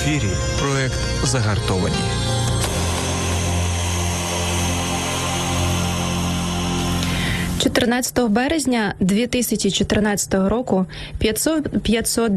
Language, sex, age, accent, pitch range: Ukrainian, female, 20-39, native, 180-230 Hz